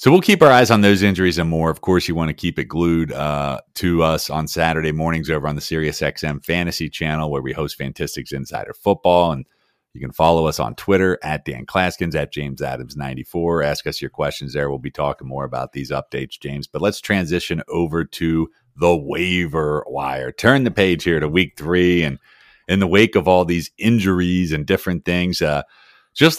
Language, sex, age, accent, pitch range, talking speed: English, male, 40-59, American, 80-100 Hz, 210 wpm